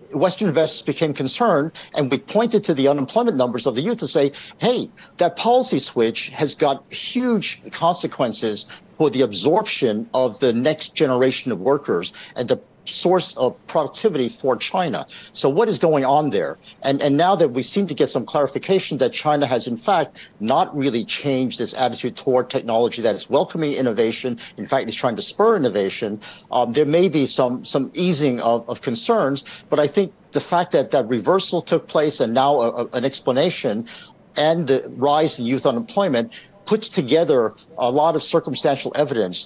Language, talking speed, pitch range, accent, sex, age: English, 180 wpm, 130-175 Hz, American, male, 50-69